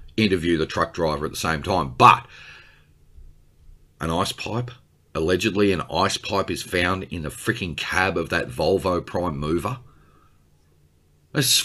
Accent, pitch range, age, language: Australian, 75-115 Hz, 40-59, English